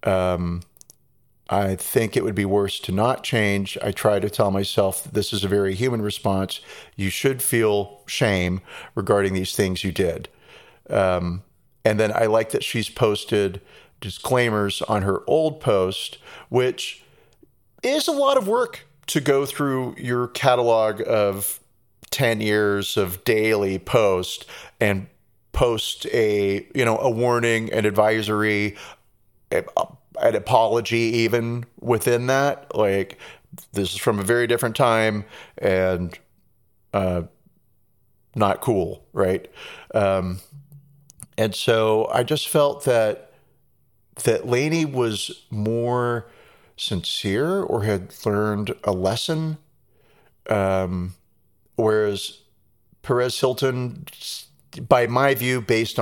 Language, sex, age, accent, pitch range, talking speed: English, male, 40-59, American, 100-125 Hz, 120 wpm